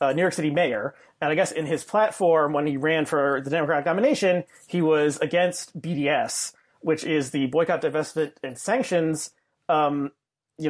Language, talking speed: English, 175 wpm